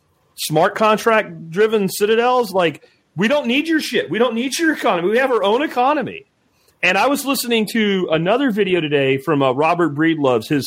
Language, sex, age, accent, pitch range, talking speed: English, male, 40-59, American, 150-205 Hz, 190 wpm